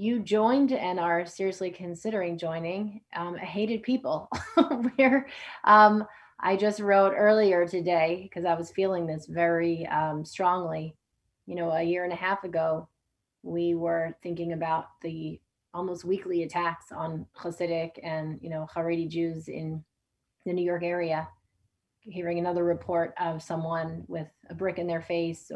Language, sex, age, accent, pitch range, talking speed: English, female, 20-39, American, 160-195 Hz, 150 wpm